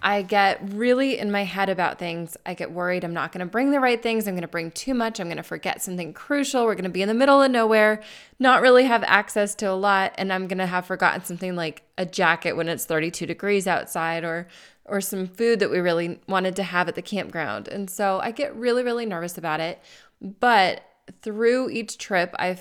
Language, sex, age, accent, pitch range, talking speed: English, female, 20-39, American, 180-225 Hz, 225 wpm